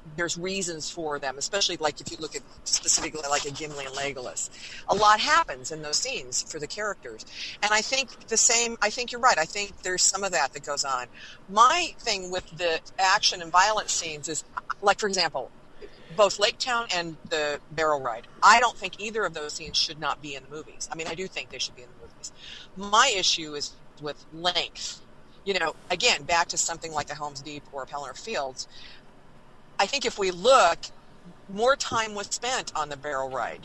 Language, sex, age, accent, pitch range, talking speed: English, female, 40-59, American, 145-205 Hz, 210 wpm